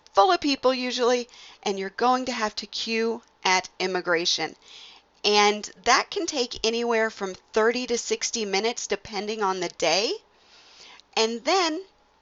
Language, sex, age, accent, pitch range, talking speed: English, female, 40-59, American, 200-250 Hz, 140 wpm